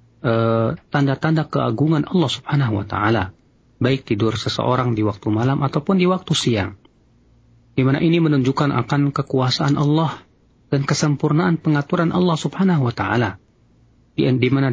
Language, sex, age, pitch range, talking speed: Indonesian, male, 40-59, 115-150 Hz, 120 wpm